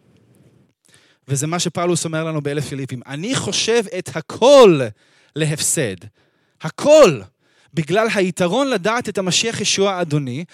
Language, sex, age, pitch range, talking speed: Hebrew, male, 20-39, 130-180 Hz, 115 wpm